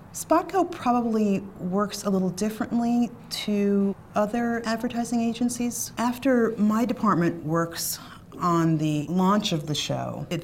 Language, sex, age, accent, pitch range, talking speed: English, female, 40-59, American, 150-190 Hz, 120 wpm